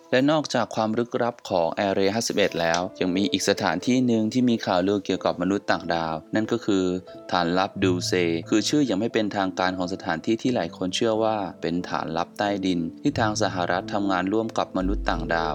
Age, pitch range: 20-39, 90-110 Hz